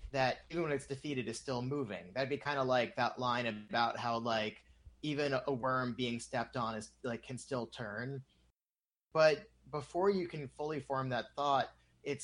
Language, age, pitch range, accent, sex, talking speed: English, 30-49, 120-145 Hz, American, male, 185 wpm